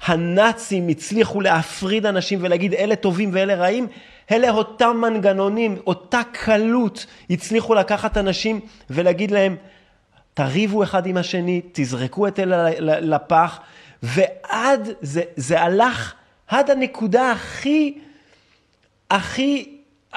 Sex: male